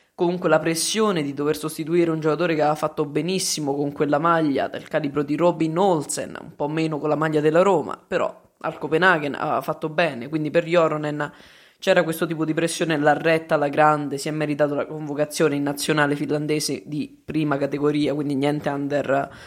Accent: native